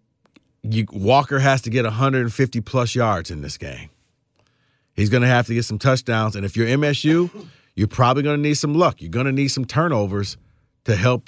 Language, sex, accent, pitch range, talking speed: English, male, American, 100-125 Hz, 190 wpm